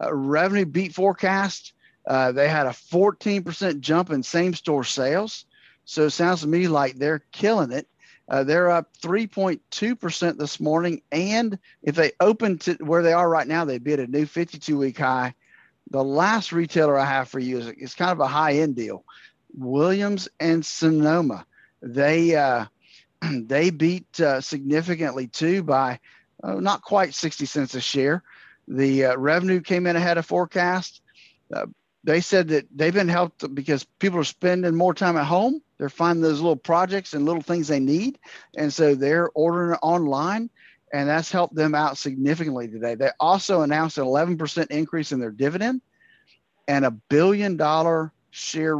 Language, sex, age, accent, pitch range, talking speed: English, male, 40-59, American, 145-180 Hz, 170 wpm